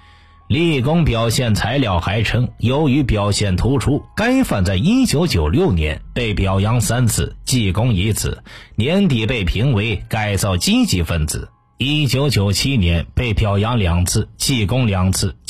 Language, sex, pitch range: Chinese, male, 100-135 Hz